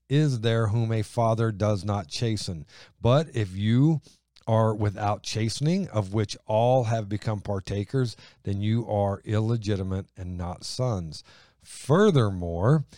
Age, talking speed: 50-69, 130 wpm